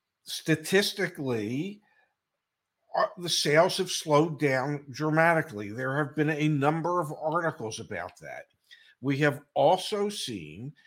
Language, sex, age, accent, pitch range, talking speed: English, male, 50-69, American, 140-175 Hz, 110 wpm